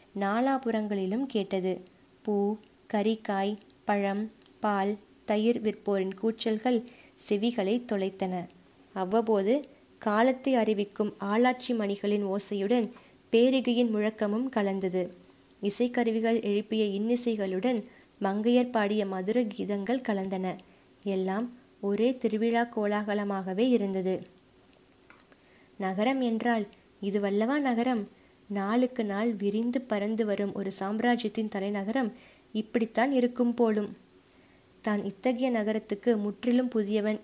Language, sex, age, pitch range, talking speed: Tamil, female, 20-39, 200-235 Hz, 85 wpm